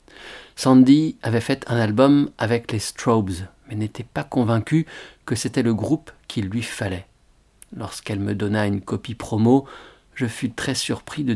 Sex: male